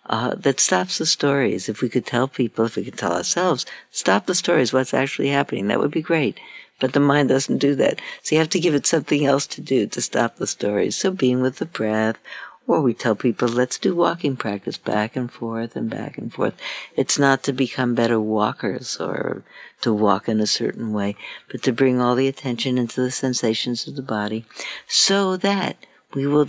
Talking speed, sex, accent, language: 215 wpm, female, American, English